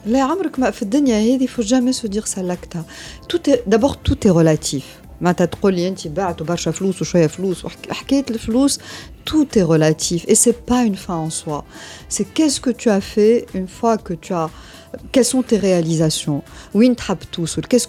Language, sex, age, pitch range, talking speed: Arabic, female, 50-69, 170-230 Hz, 125 wpm